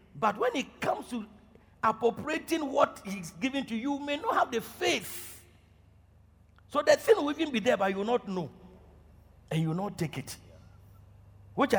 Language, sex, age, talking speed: English, male, 50-69, 185 wpm